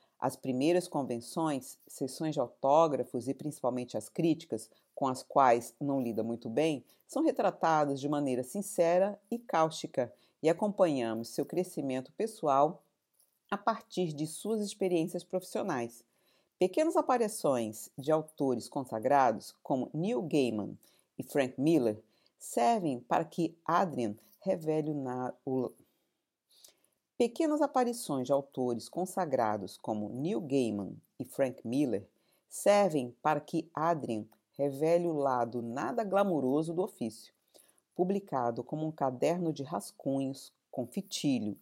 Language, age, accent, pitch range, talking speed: Portuguese, 50-69, Brazilian, 130-180 Hz, 120 wpm